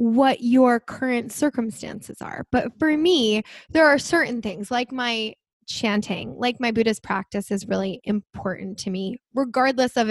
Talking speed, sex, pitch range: 155 wpm, female, 205-250 Hz